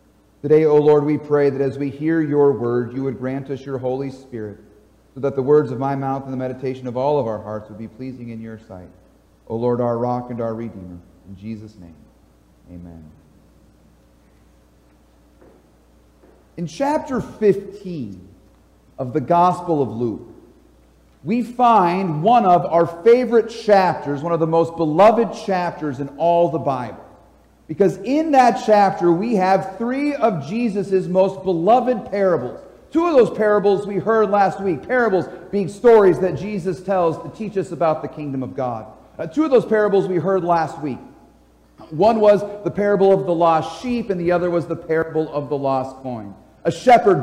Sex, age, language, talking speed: male, 40-59, English, 175 wpm